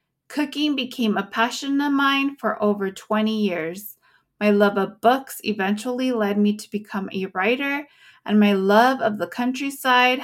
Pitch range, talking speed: 195-240 Hz, 160 wpm